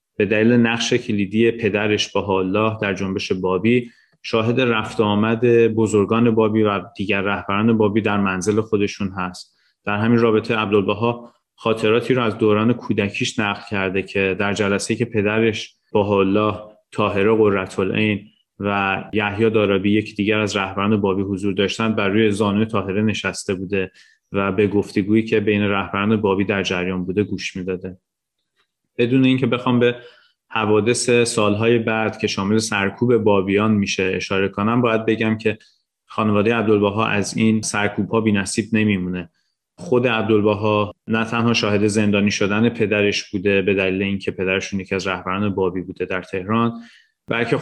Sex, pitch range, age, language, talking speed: male, 100-115 Hz, 30-49, Persian, 155 wpm